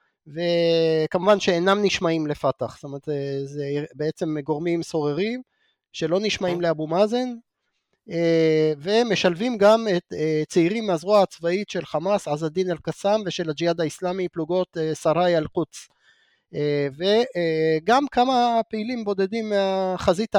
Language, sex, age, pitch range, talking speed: Hebrew, male, 30-49, 155-205 Hz, 105 wpm